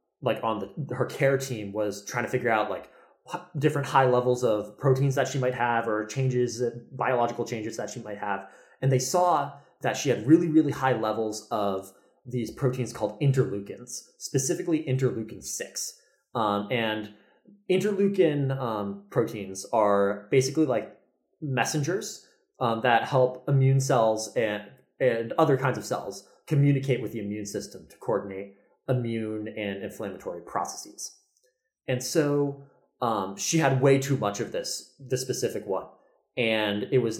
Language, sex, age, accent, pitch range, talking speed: English, male, 20-39, American, 105-135 Hz, 150 wpm